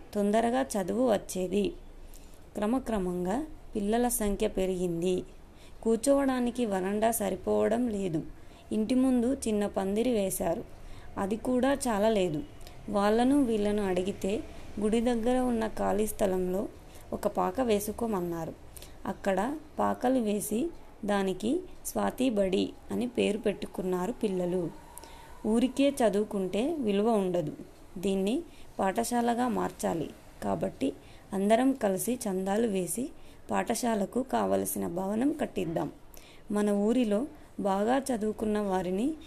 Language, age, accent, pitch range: Telugu, 20-39, native, 195-240 Hz